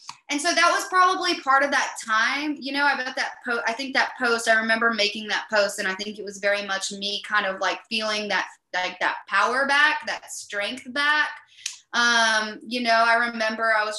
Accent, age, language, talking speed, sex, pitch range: American, 20-39, English, 220 wpm, female, 200-235 Hz